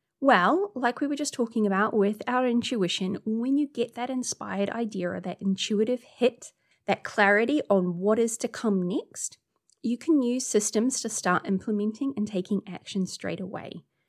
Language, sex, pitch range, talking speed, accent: English, female, 195-245 Hz, 170 wpm, Australian